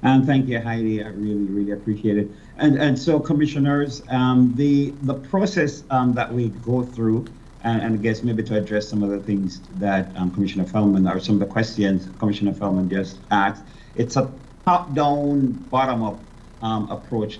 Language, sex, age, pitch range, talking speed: English, male, 50-69, 100-125 Hz, 190 wpm